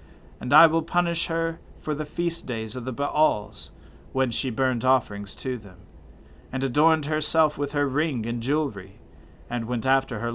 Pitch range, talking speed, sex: 100-140 Hz, 175 wpm, male